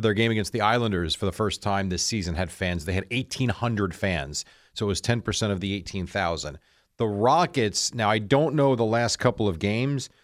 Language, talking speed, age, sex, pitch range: English, 205 wpm, 40-59, male, 95-125 Hz